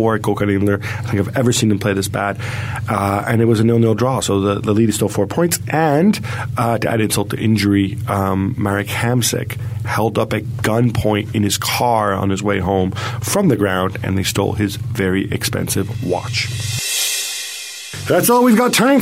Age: 40-59